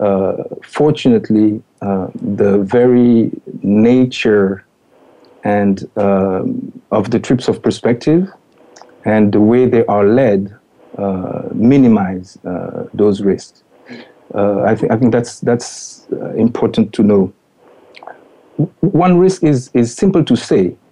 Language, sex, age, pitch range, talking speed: English, male, 50-69, 100-130 Hz, 125 wpm